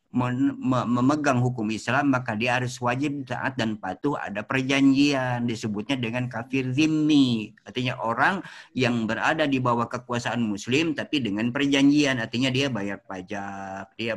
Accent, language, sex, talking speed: native, Indonesian, male, 145 wpm